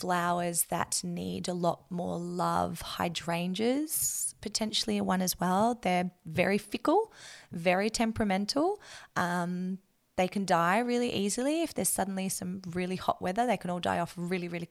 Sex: female